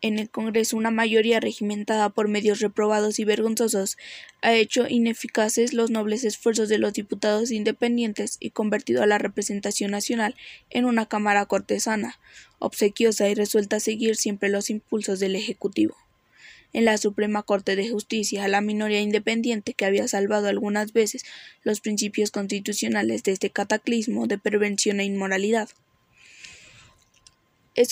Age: 10-29